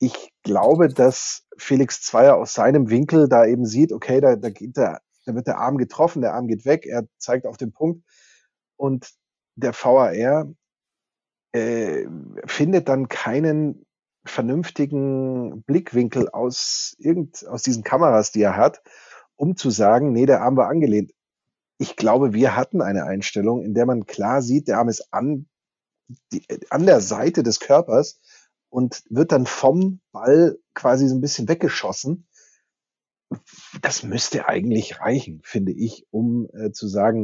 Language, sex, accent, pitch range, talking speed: German, male, German, 110-140 Hz, 150 wpm